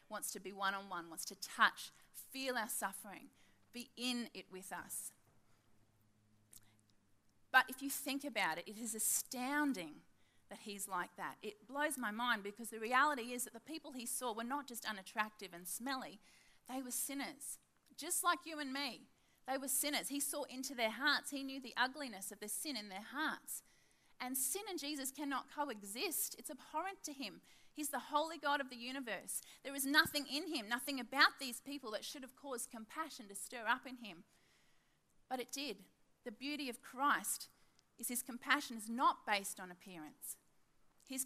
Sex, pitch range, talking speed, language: female, 205-275 Hz, 180 wpm, English